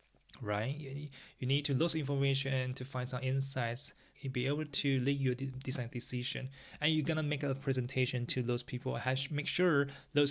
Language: English